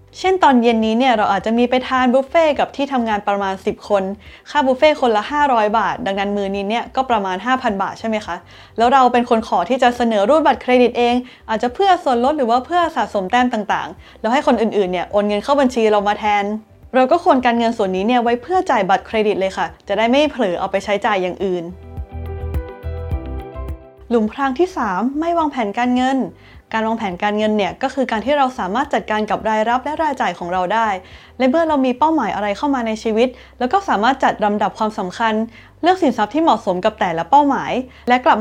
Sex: female